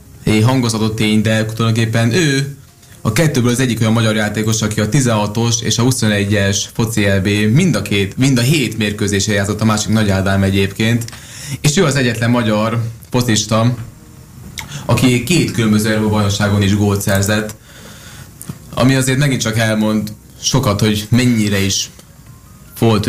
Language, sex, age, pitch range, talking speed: Hungarian, male, 20-39, 105-120 Hz, 145 wpm